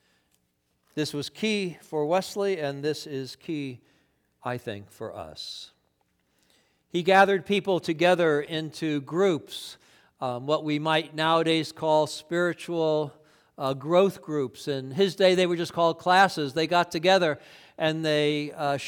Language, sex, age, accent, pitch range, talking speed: English, male, 60-79, American, 125-175 Hz, 135 wpm